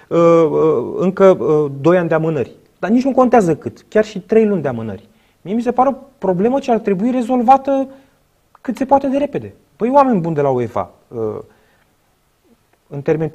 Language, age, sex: Romanian, 30-49, male